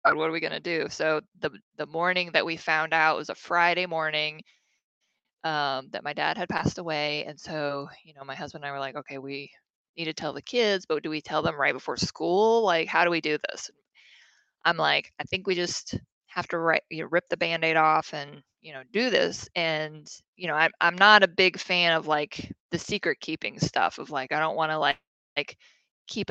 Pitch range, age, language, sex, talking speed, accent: 150-175 Hz, 20-39, English, female, 230 wpm, American